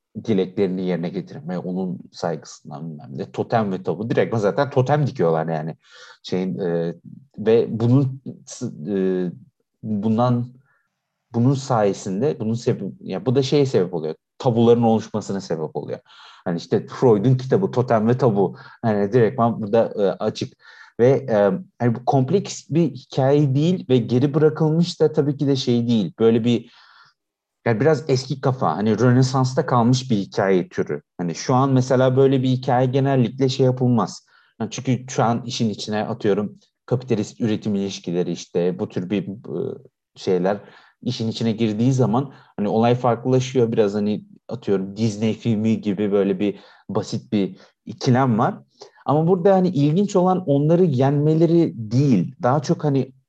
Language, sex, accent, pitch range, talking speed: Turkish, male, native, 105-140 Hz, 145 wpm